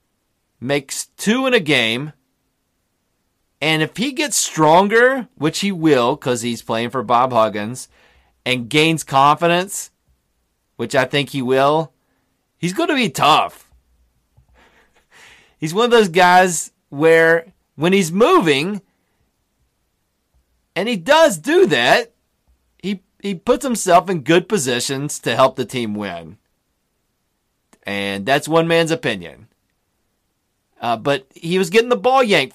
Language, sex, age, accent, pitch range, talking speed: English, male, 30-49, American, 125-185 Hz, 130 wpm